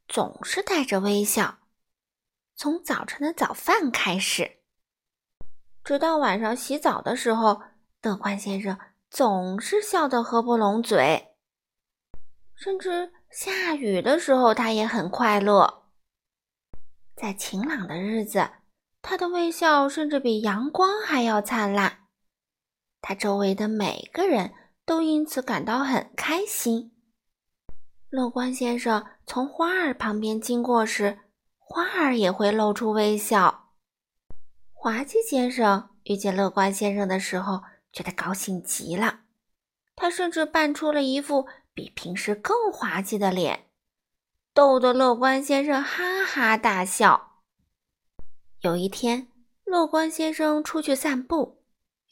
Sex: female